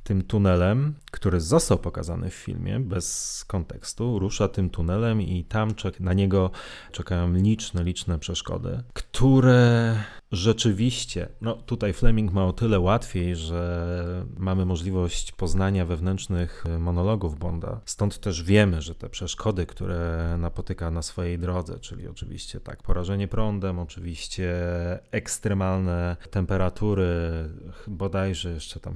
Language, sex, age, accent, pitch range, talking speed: Polish, male, 30-49, native, 90-105 Hz, 120 wpm